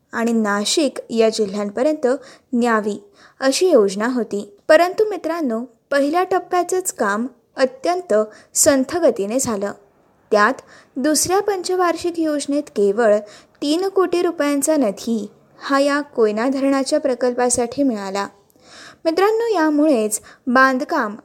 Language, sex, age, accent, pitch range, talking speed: Marathi, female, 20-39, native, 225-310 Hz, 95 wpm